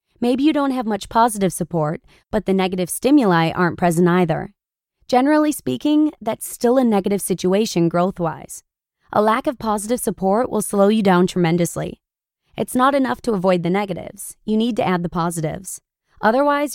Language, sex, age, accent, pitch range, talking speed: English, female, 20-39, American, 180-240 Hz, 165 wpm